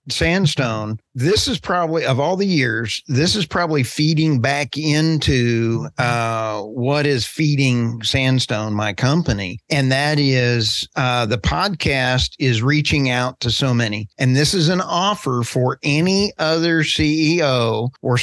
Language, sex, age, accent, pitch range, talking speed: English, male, 50-69, American, 120-155 Hz, 140 wpm